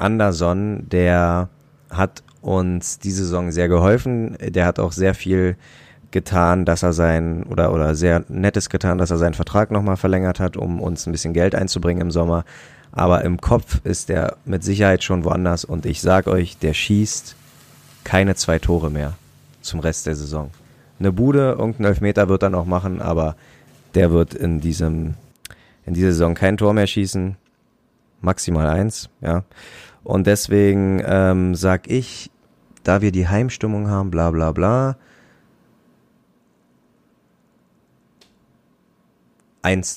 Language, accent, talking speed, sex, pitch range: German, German, 145 wpm, male, 80-100 Hz